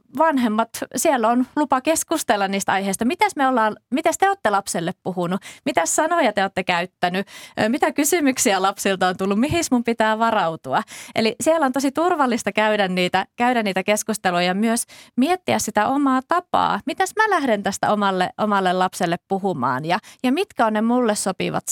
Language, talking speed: Finnish, 155 wpm